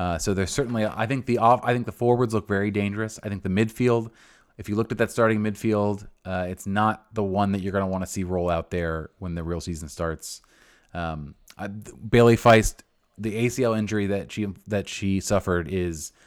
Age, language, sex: 30-49, English, male